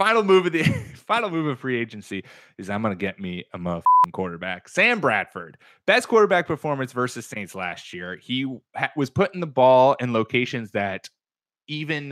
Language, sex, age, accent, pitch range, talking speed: English, male, 30-49, American, 120-185 Hz, 175 wpm